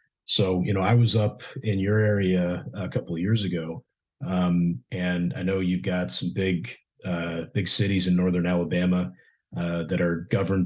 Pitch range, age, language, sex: 90-110 Hz, 30-49, English, male